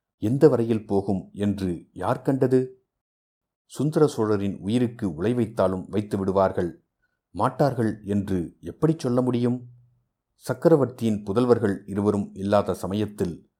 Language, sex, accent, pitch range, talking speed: Tamil, male, native, 100-125 Hz, 95 wpm